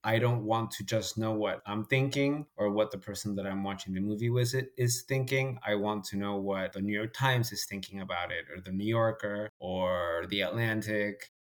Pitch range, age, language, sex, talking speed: 100-120 Hz, 20-39, English, male, 215 wpm